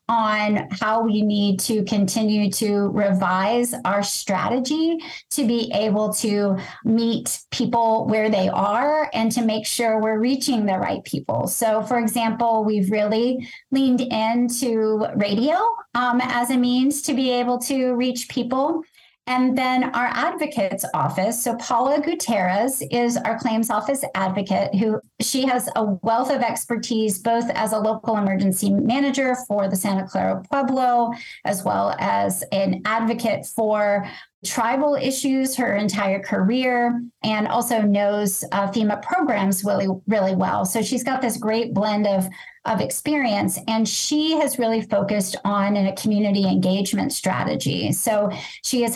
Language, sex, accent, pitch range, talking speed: English, female, American, 205-250 Hz, 145 wpm